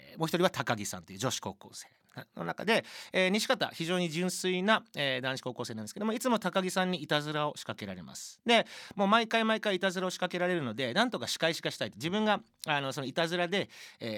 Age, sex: 40-59, male